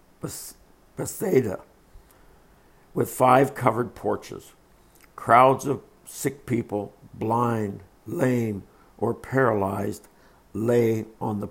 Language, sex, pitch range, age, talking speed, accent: English, male, 100-135 Hz, 60-79, 85 wpm, American